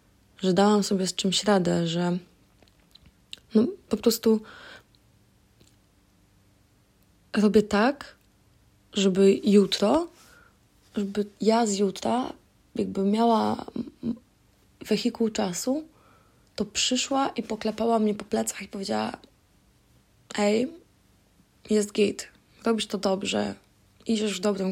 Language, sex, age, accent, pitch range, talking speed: Polish, female, 20-39, native, 185-220 Hz, 95 wpm